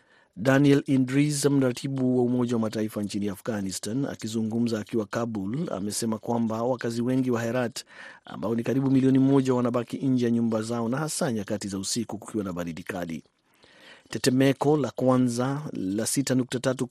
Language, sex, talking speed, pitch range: Swahili, male, 145 wpm, 110-135 Hz